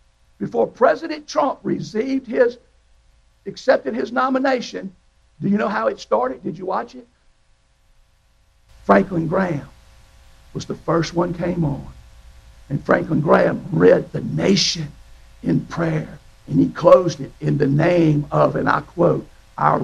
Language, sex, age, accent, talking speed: English, male, 60-79, American, 140 wpm